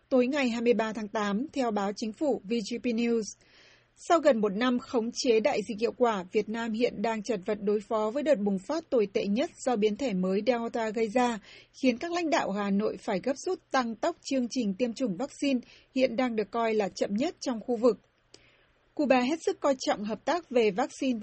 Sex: female